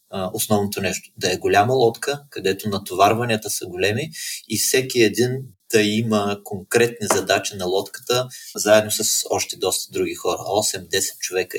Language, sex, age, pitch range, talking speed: Bulgarian, male, 30-49, 100-115 Hz, 140 wpm